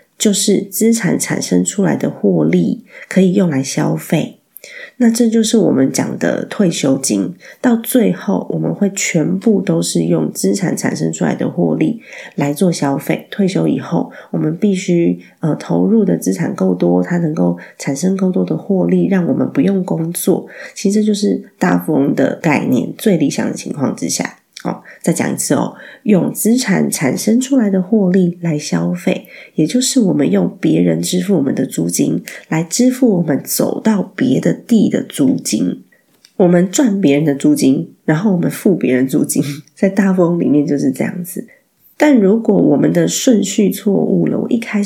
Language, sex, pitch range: Chinese, female, 150-220 Hz